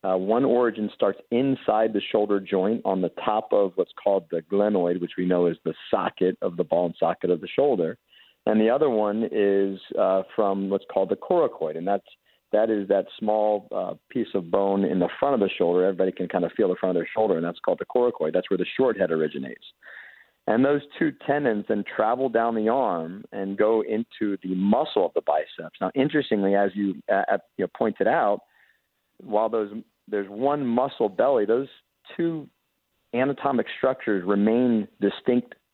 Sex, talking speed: male, 195 wpm